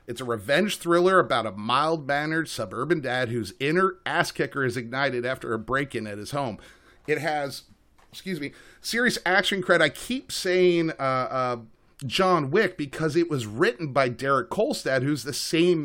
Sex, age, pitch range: male, 30-49, 120-160 Hz